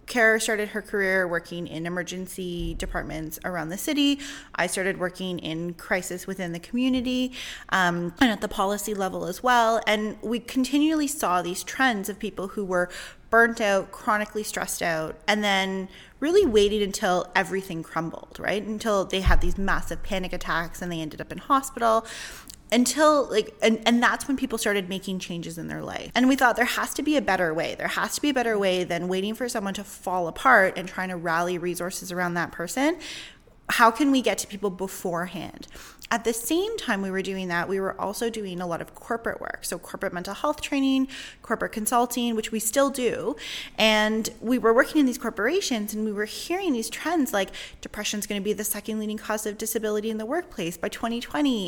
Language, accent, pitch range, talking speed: English, American, 185-240 Hz, 200 wpm